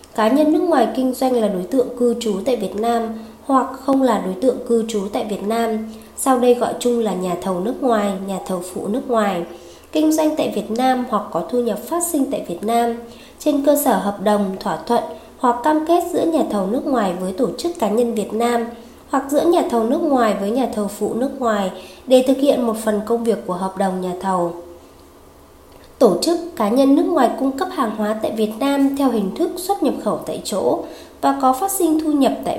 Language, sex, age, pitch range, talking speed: Vietnamese, female, 20-39, 210-265 Hz, 230 wpm